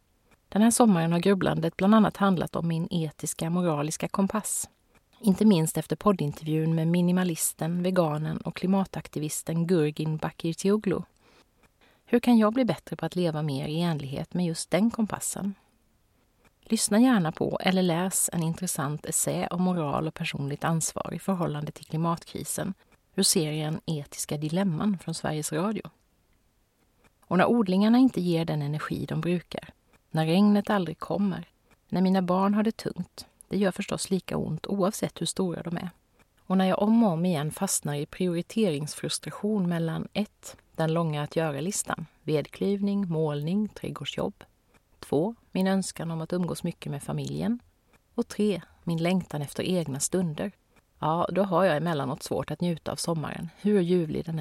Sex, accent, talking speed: female, native, 155 wpm